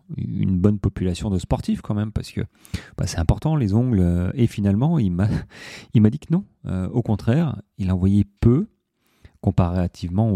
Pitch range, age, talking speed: 90-115 Hz, 30-49, 180 wpm